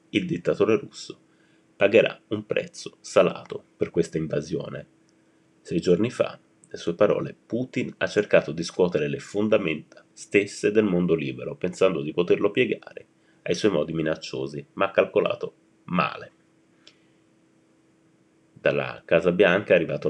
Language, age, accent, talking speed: Italian, 30-49, native, 130 wpm